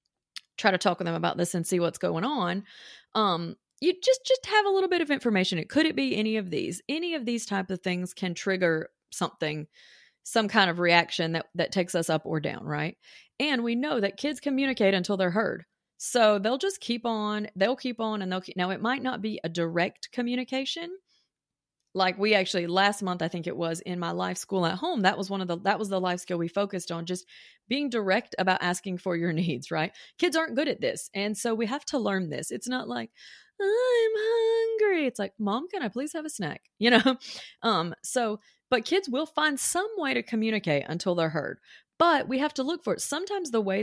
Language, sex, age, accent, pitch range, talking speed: English, female, 30-49, American, 180-265 Hz, 225 wpm